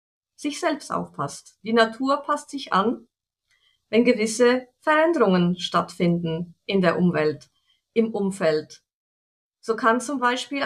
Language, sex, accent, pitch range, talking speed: German, female, German, 185-280 Hz, 120 wpm